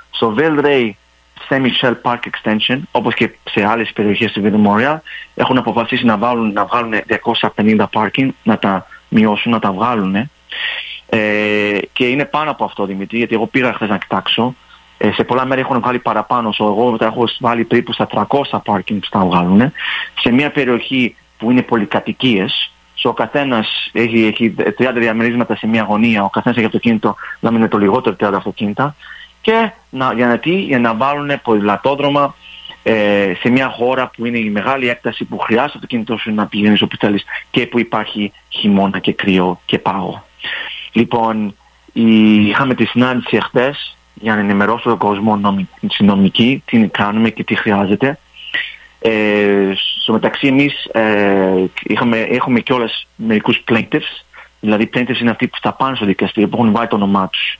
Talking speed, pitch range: 160 wpm, 105-125 Hz